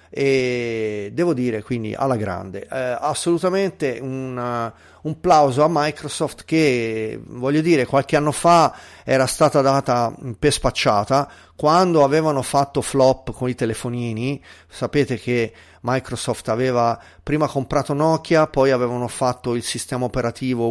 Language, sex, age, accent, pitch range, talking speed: Italian, male, 30-49, native, 120-150 Hz, 130 wpm